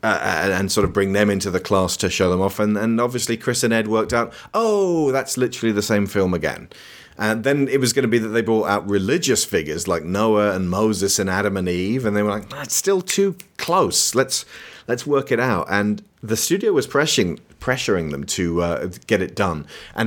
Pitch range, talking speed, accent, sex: 95-135 Hz, 225 wpm, British, male